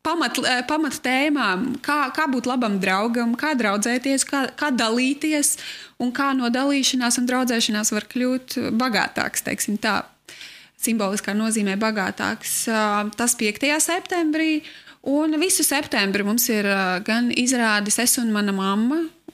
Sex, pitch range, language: female, 215-255 Hz, English